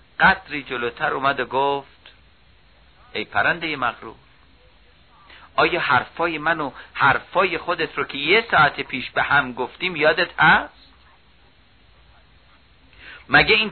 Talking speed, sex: 110 wpm, male